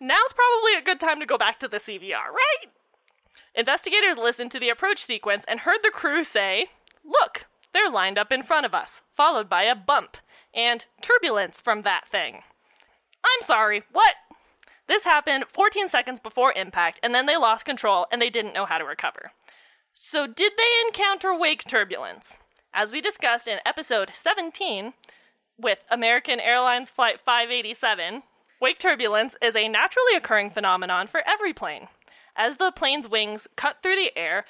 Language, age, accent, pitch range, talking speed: English, 20-39, American, 225-360 Hz, 165 wpm